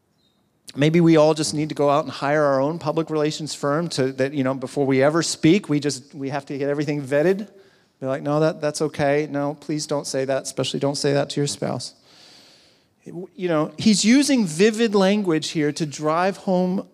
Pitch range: 130-165 Hz